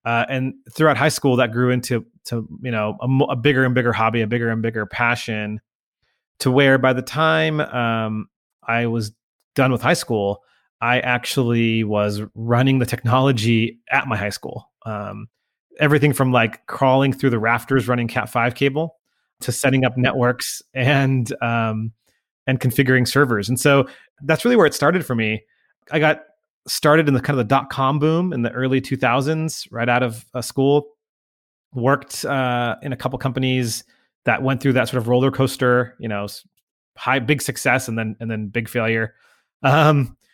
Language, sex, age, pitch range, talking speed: English, male, 30-49, 115-135 Hz, 175 wpm